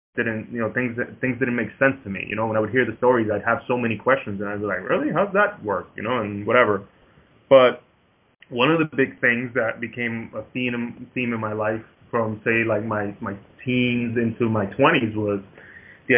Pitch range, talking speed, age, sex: 105-125 Hz, 225 wpm, 20-39, male